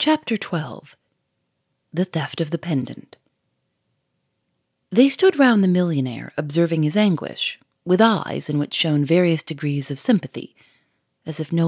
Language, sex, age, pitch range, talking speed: English, female, 30-49, 145-210 Hz, 140 wpm